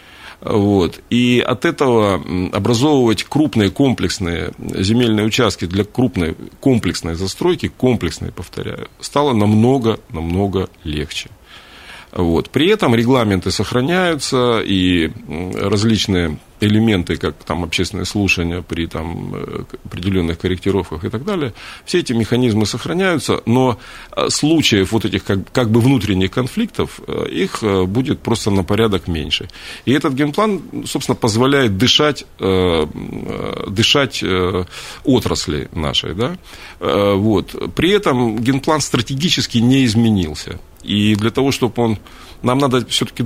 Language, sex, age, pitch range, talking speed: Russian, male, 40-59, 95-125 Hz, 105 wpm